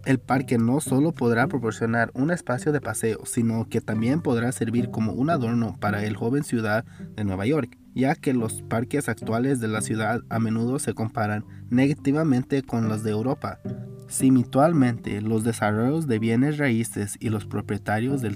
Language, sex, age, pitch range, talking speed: English, male, 20-39, 110-130 Hz, 170 wpm